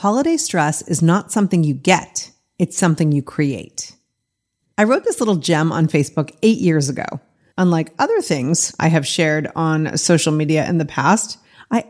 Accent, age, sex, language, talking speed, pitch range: American, 40-59, female, English, 170 wpm, 155-195 Hz